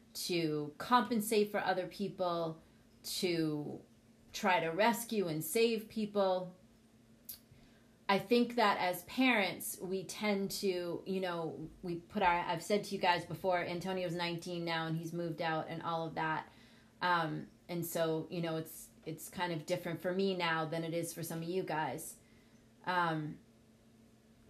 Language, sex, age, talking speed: English, female, 30-49, 155 wpm